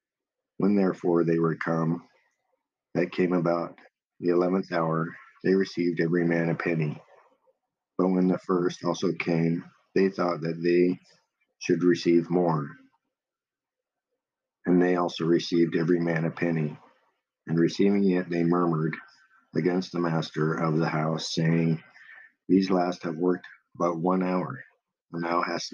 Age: 50-69